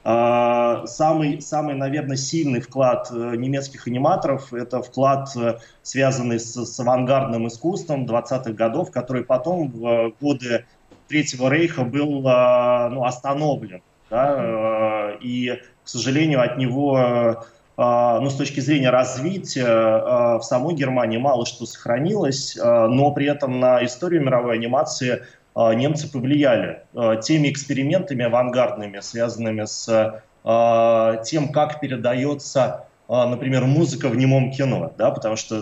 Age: 20-39